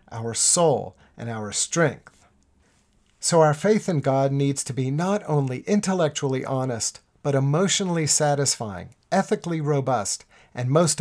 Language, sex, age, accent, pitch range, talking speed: English, male, 50-69, American, 125-160 Hz, 130 wpm